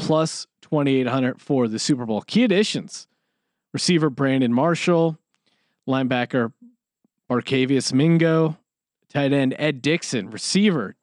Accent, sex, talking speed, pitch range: American, male, 105 wpm, 130-180 Hz